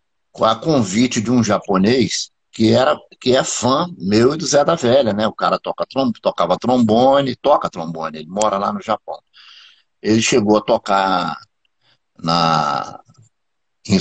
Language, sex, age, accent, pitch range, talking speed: Portuguese, male, 60-79, Brazilian, 105-160 Hz, 150 wpm